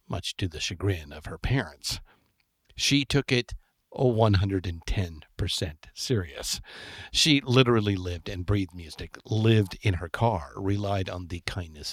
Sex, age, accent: male, 50-69, American